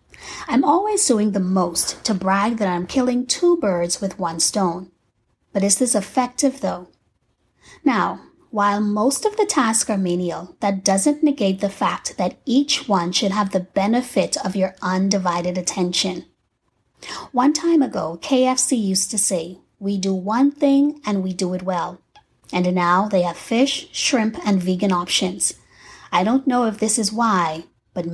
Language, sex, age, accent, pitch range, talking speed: English, female, 30-49, American, 180-250 Hz, 165 wpm